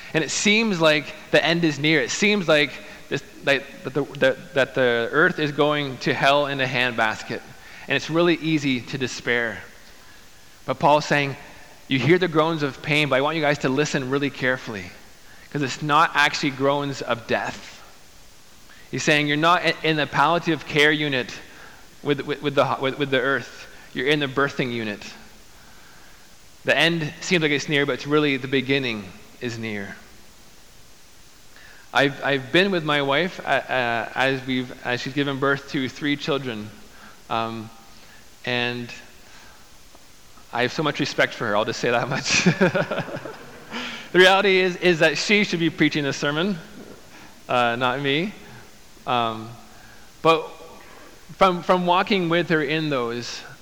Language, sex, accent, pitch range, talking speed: English, male, American, 130-160 Hz, 160 wpm